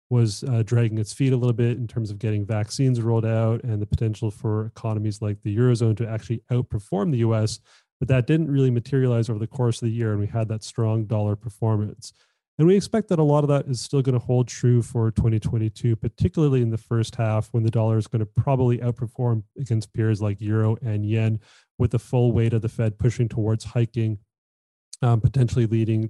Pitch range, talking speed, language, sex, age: 110-125 Hz, 215 wpm, English, male, 30-49